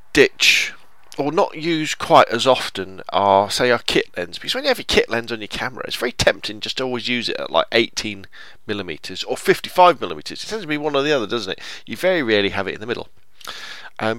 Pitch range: 100-130 Hz